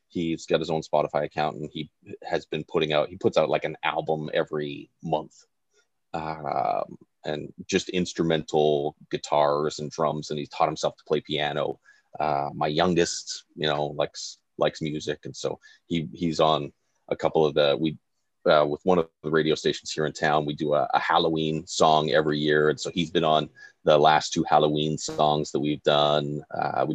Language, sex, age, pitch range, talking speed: English, male, 30-49, 75-115 Hz, 190 wpm